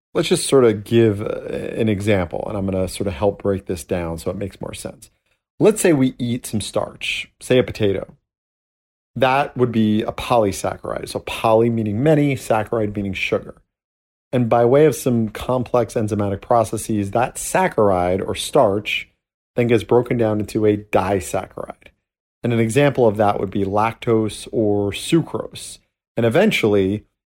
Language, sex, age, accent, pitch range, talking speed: English, male, 40-59, American, 100-120 Hz, 165 wpm